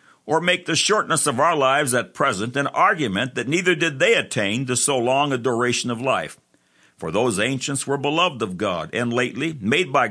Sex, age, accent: male, 60-79, American